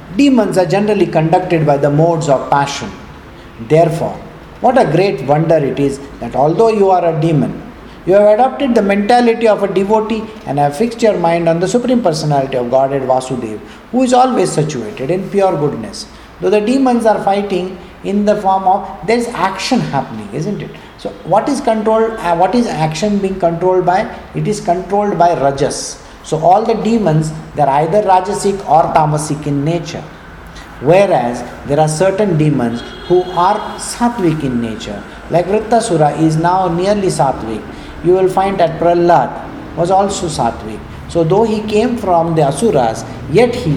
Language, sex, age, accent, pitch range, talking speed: English, male, 50-69, Indian, 145-215 Hz, 170 wpm